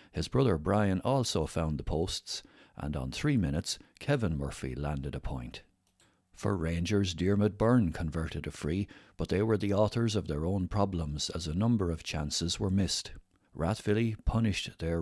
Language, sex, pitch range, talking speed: English, male, 85-105 Hz, 170 wpm